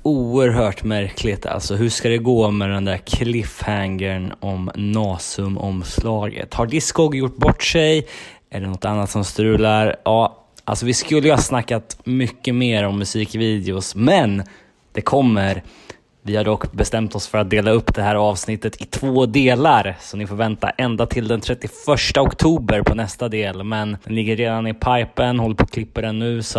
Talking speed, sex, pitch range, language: 175 wpm, male, 105-130 Hz, Swedish